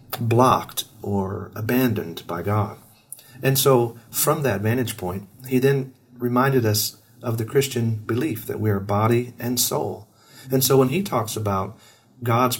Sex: male